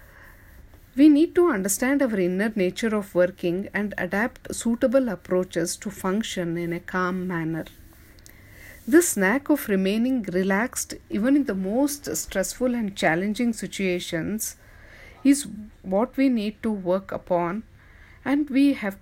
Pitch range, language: 170-225 Hz, English